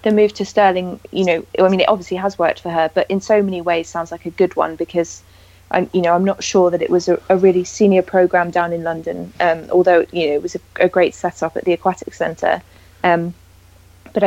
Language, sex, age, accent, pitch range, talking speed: English, female, 20-39, British, 165-185 Hz, 245 wpm